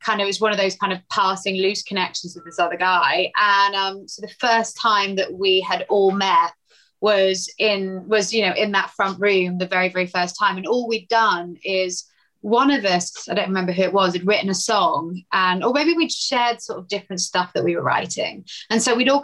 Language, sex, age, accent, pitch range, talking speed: English, female, 20-39, British, 190-235 Hz, 235 wpm